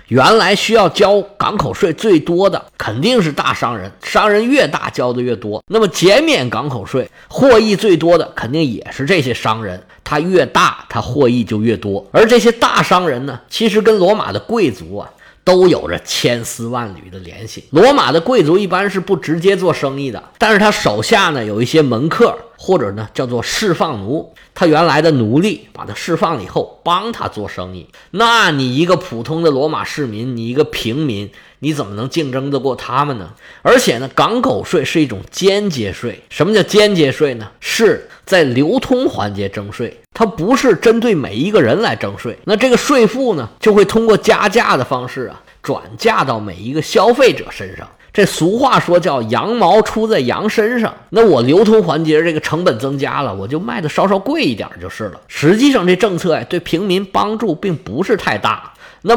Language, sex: Chinese, male